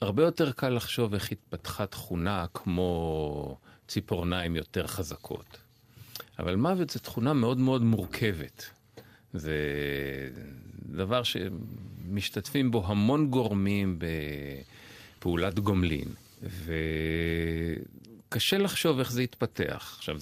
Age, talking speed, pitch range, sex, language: 40-59, 95 wpm, 85-115 Hz, male, Hebrew